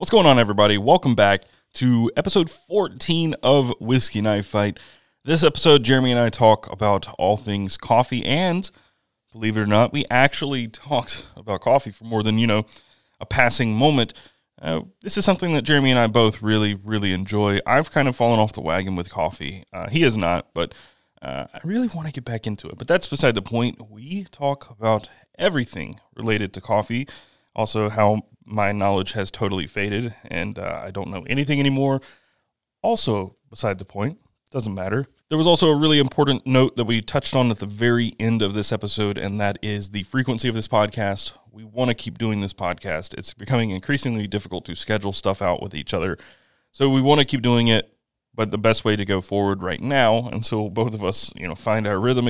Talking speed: 205 wpm